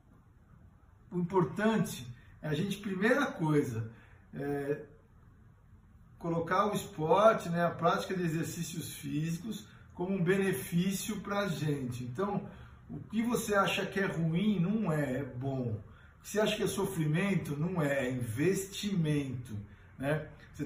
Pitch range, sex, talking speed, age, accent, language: 135-195 Hz, male, 130 wpm, 50-69, Brazilian, Portuguese